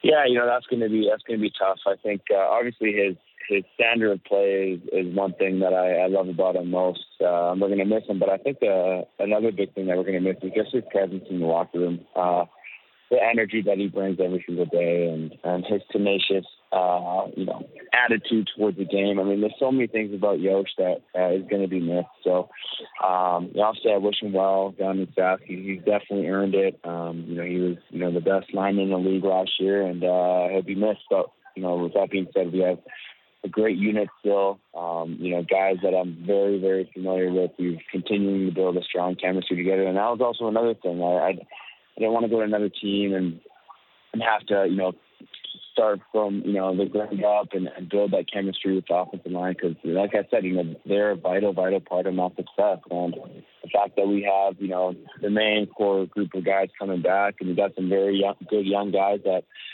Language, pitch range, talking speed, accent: English, 90-100 Hz, 240 wpm, American